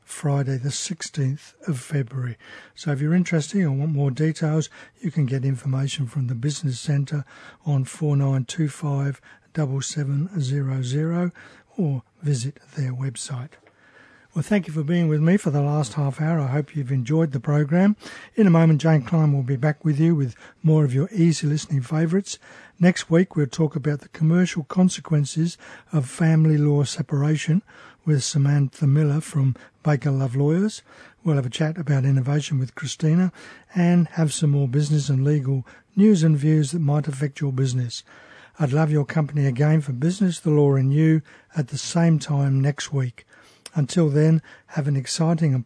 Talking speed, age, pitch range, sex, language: 175 wpm, 60-79, 140-165 Hz, male, English